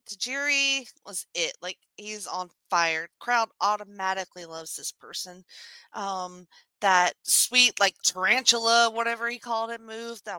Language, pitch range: English, 190-240 Hz